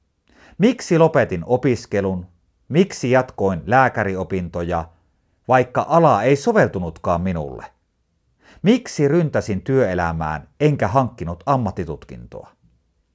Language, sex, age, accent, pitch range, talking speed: Finnish, male, 50-69, native, 85-130 Hz, 80 wpm